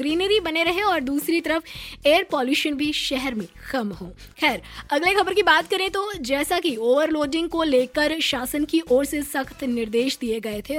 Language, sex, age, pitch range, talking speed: Hindi, female, 20-39, 255-330 Hz, 190 wpm